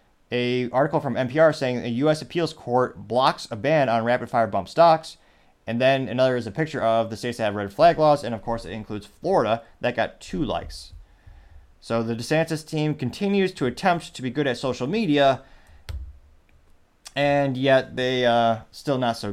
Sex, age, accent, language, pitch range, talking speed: male, 30-49, American, English, 115-150 Hz, 185 wpm